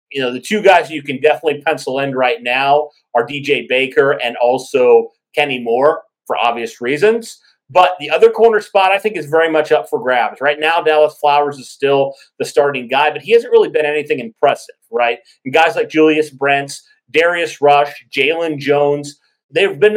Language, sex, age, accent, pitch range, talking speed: English, male, 40-59, American, 140-170 Hz, 190 wpm